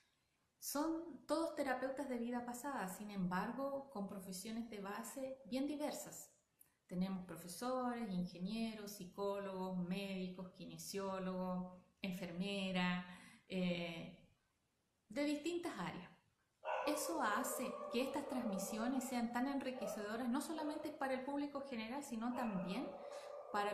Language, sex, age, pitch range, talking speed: Spanish, female, 30-49, 200-270 Hz, 105 wpm